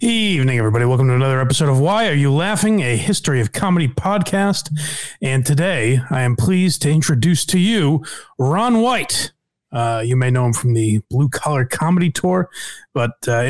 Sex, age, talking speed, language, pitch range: male, 30-49, 180 wpm, English, 120-165 Hz